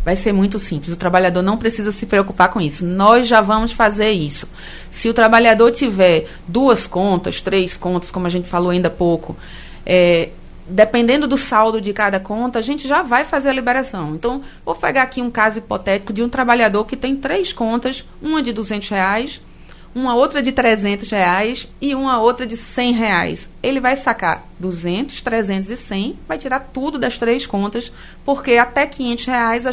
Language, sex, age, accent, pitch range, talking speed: Portuguese, female, 30-49, Brazilian, 195-255 Hz, 185 wpm